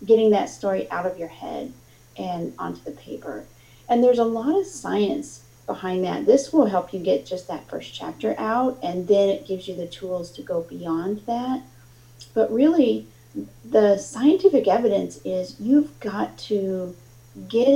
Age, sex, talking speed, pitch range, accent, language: 40-59, female, 170 wpm, 170-220 Hz, American, English